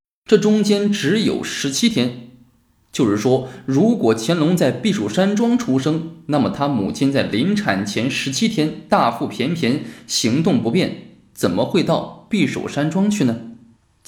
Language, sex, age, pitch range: Chinese, male, 20-39, 125-200 Hz